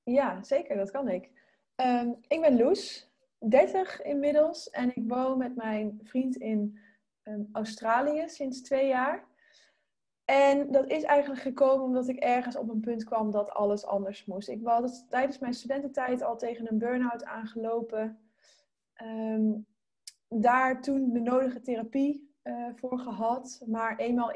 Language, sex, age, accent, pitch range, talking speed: Dutch, female, 20-39, Dutch, 220-260 Hz, 150 wpm